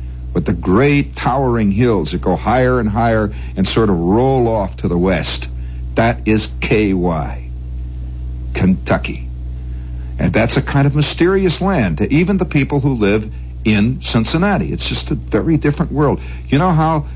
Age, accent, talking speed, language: 60-79, American, 160 wpm, English